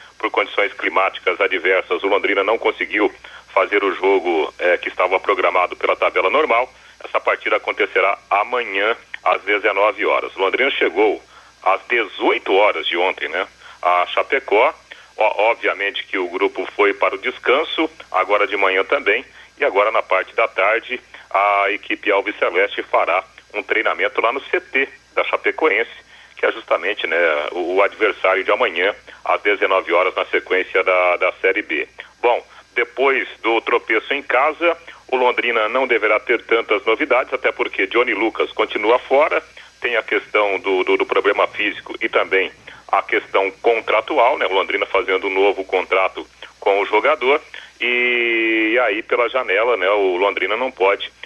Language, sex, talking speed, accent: Portuguese, male, 155 wpm, Brazilian